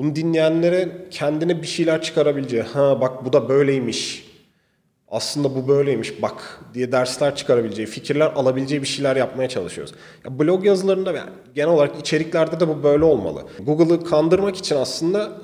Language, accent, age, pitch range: Turkish, native, 40-59, 130-165 Hz